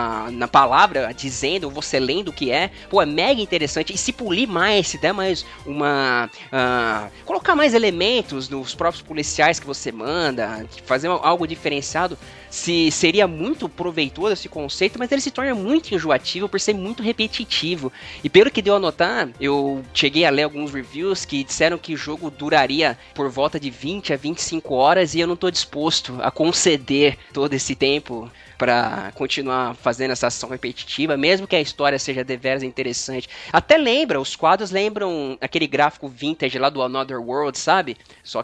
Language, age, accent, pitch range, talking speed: Portuguese, 20-39, Brazilian, 135-195 Hz, 175 wpm